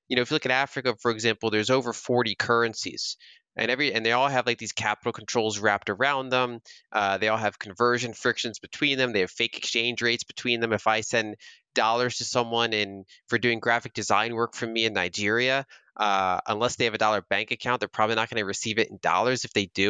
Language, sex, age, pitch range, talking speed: English, male, 20-39, 105-125 Hz, 230 wpm